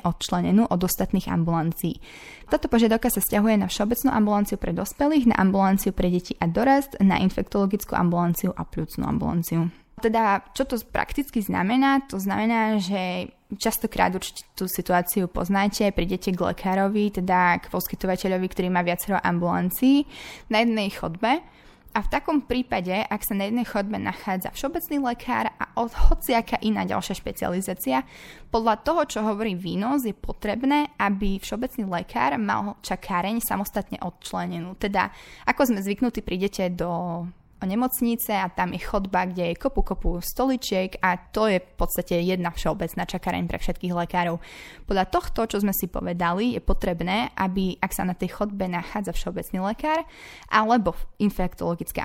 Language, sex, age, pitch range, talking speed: Slovak, female, 20-39, 180-225 Hz, 145 wpm